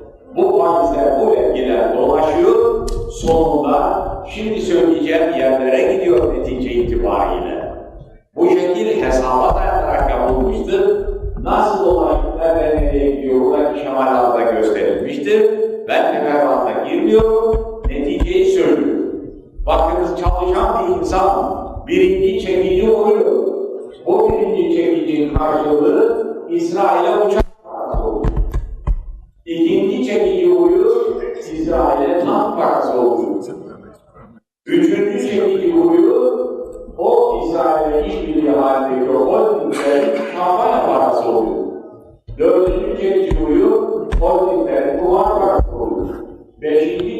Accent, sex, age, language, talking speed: native, male, 50-69, Turkish, 90 wpm